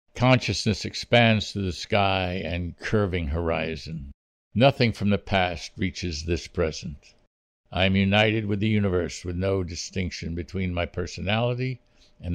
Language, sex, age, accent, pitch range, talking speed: English, male, 60-79, American, 90-115 Hz, 135 wpm